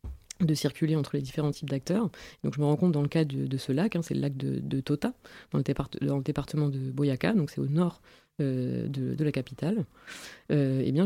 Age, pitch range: 30-49, 140-170 Hz